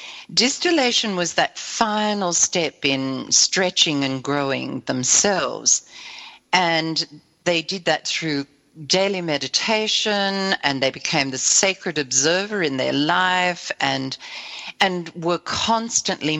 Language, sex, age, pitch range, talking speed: English, female, 50-69, 150-190 Hz, 110 wpm